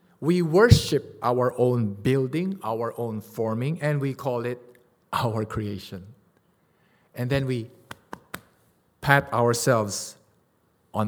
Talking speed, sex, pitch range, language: 110 wpm, male, 120-150 Hz, English